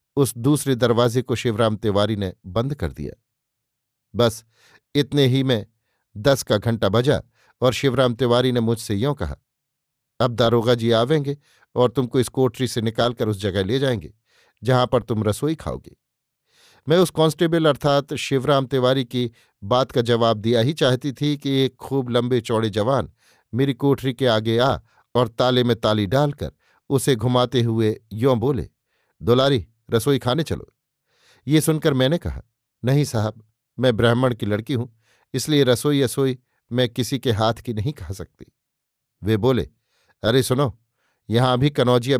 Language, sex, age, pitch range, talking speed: Hindi, male, 50-69, 115-135 Hz, 160 wpm